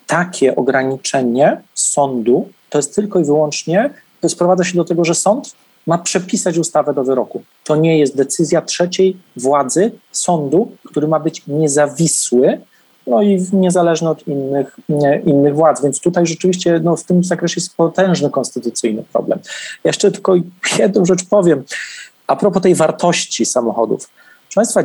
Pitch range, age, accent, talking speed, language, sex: 150-185 Hz, 40-59, native, 150 wpm, Polish, male